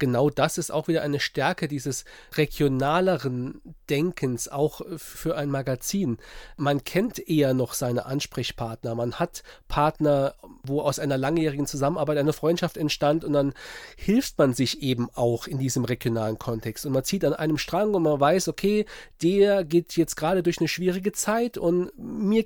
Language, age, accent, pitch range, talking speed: German, 40-59, German, 140-185 Hz, 165 wpm